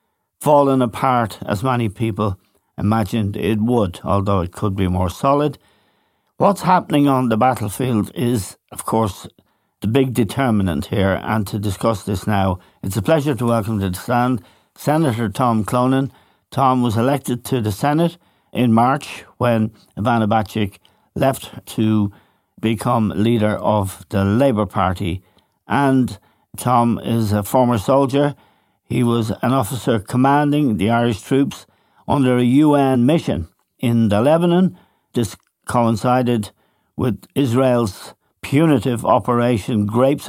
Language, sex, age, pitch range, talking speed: English, male, 60-79, 105-130 Hz, 135 wpm